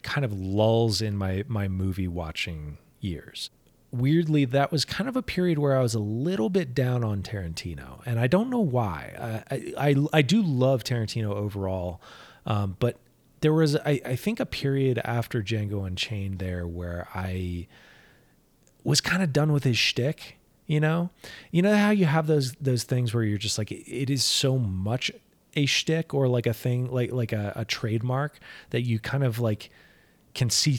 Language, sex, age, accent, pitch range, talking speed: English, male, 30-49, American, 100-140 Hz, 185 wpm